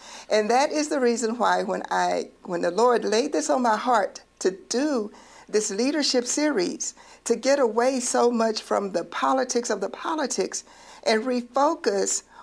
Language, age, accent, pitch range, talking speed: English, 60-79, American, 225-305 Hz, 165 wpm